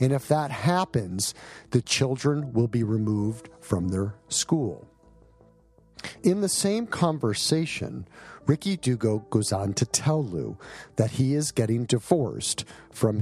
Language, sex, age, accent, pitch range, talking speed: English, male, 50-69, American, 110-145 Hz, 130 wpm